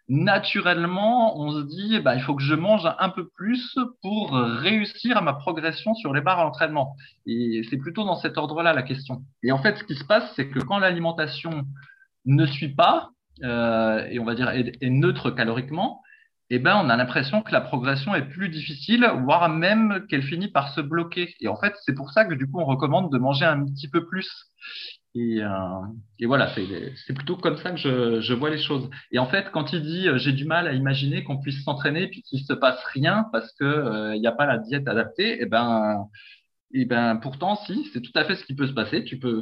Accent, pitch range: French, 125-175 Hz